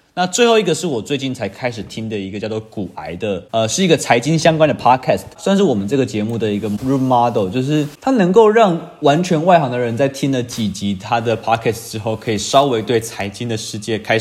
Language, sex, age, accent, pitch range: Chinese, male, 20-39, native, 100-140 Hz